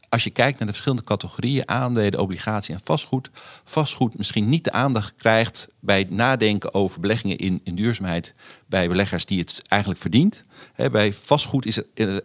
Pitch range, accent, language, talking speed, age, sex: 100-120 Hz, Dutch, Dutch, 175 wpm, 50-69, male